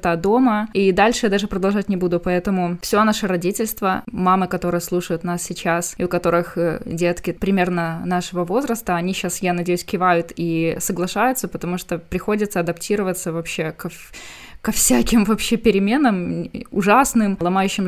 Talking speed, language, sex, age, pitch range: 145 wpm, Ukrainian, female, 20-39, 180-215 Hz